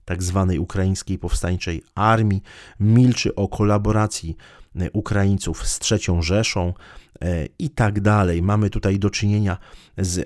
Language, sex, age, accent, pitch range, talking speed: Polish, male, 30-49, native, 85-100 Hz, 110 wpm